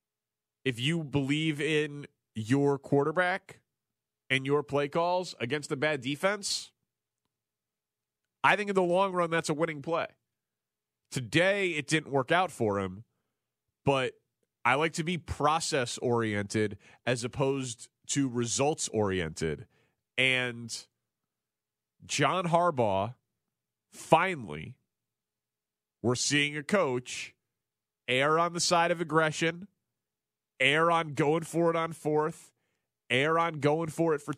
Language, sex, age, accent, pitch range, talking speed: English, male, 30-49, American, 120-165 Hz, 120 wpm